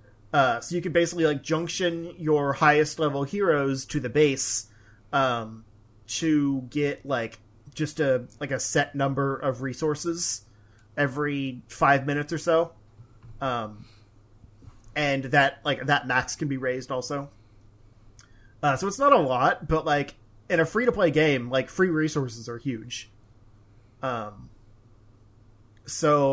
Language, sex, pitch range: English, male, 110-150 Hz